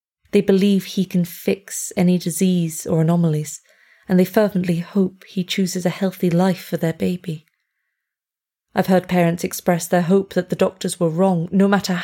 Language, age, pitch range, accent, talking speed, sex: English, 30-49, 165-190 Hz, British, 170 wpm, female